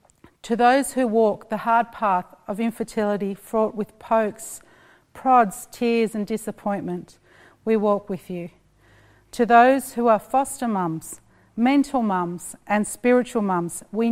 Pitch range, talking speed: 190-235 Hz, 135 wpm